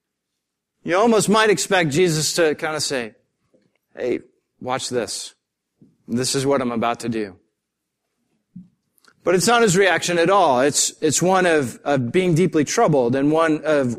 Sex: male